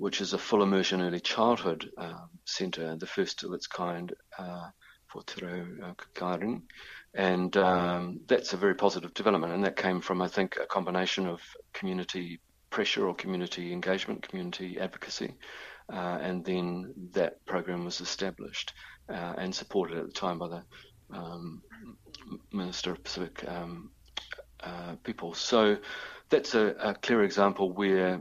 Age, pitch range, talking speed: 50-69, 90-95 Hz, 155 wpm